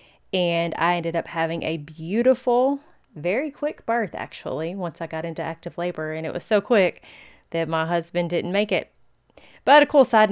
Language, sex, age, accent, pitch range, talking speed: English, female, 30-49, American, 165-210 Hz, 185 wpm